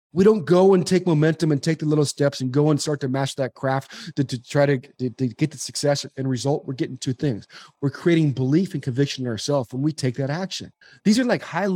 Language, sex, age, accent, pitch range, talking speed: English, male, 30-49, American, 140-185 Hz, 255 wpm